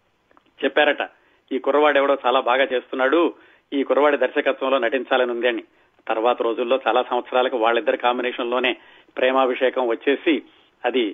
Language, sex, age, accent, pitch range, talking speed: Telugu, male, 40-59, native, 130-155 Hz, 115 wpm